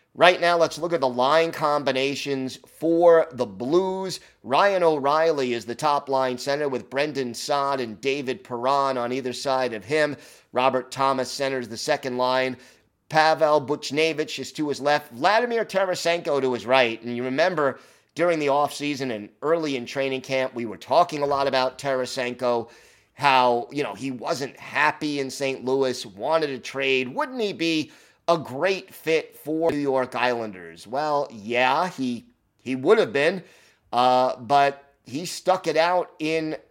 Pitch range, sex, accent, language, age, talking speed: 130-155 Hz, male, American, English, 30-49, 160 wpm